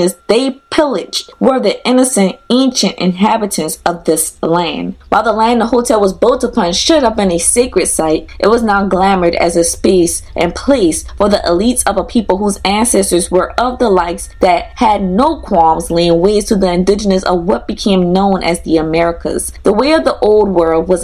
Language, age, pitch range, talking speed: English, 20-39, 175-225 Hz, 195 wpm